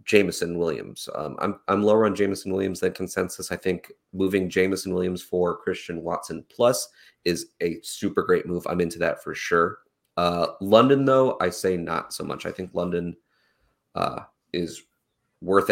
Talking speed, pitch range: 170 wpm, 90-100 Hz